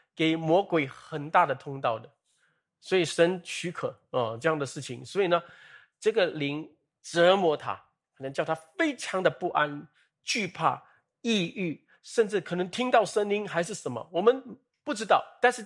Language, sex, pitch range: Chinese, male, 150-205 Hz